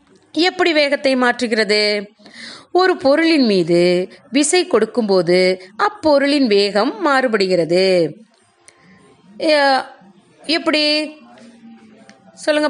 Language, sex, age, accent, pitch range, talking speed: Tamil, female, 30-49, native, 230-320 Hz, 60 wpm